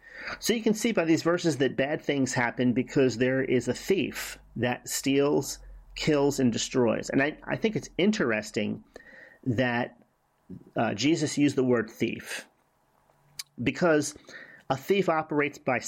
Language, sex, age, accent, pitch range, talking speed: English, male, 40-59, American, 120-145 Hz, 145 wpm